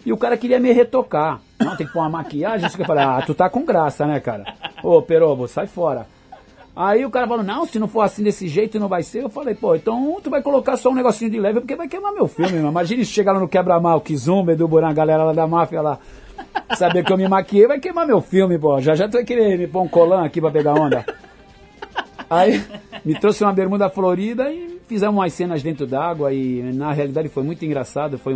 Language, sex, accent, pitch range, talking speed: Portuguese, male, Brazilian, 140-195 Hz, 240 wpm